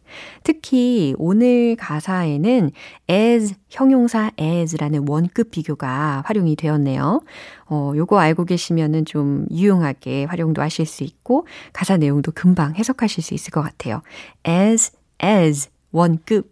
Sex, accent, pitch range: female, native, 155-210 Hz